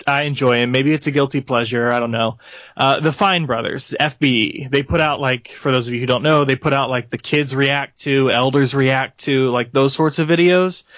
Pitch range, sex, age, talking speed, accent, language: 125-155 Hz, male, 20-39, 235 wpm, American, English